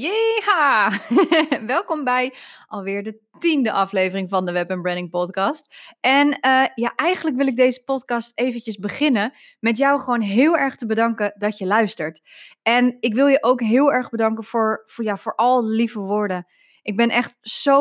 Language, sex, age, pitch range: Dutch, female, 20-39, 200-265 Hz